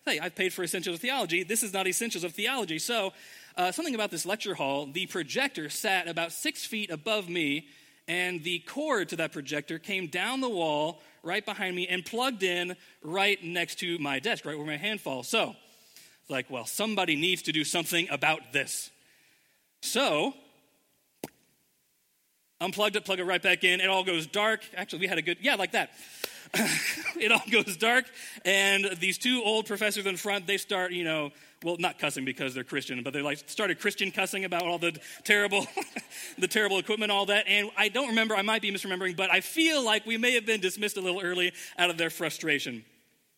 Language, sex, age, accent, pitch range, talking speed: English, male, 30-49, American, 160-205 Hz, 200 wpm